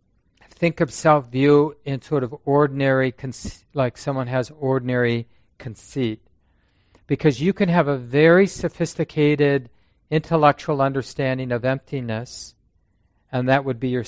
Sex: male